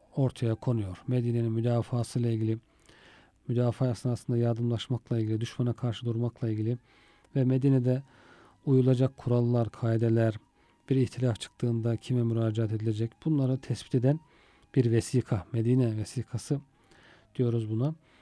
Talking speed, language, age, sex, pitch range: 110 wpm, Turkish, 40-59, male, 115-140 Hz